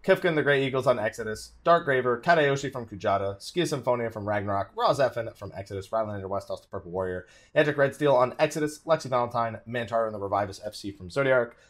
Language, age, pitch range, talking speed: English, 20-39, 105-150 Hz, 200 wpm